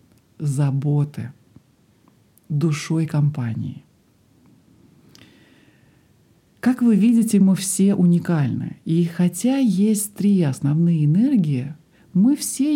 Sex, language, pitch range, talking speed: male, Russian, 145-195 Hz, 80 wpm